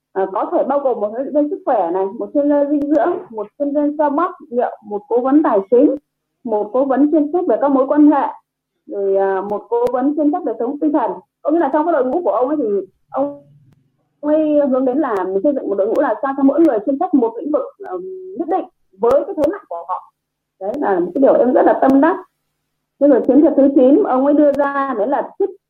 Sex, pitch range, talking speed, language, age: female, 210-305 Hz, 260 wpm, Vietnamese, 30-49